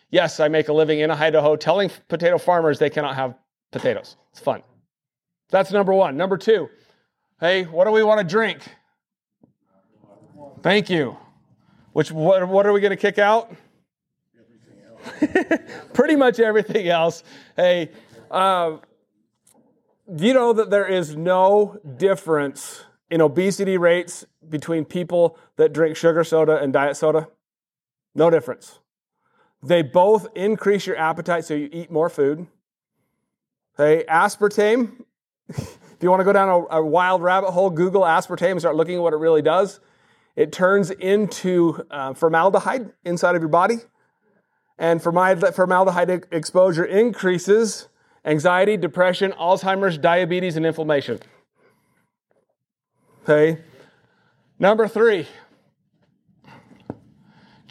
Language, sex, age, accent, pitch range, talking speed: English, male, 30-49, American, 160-205 Hz, 130 wpm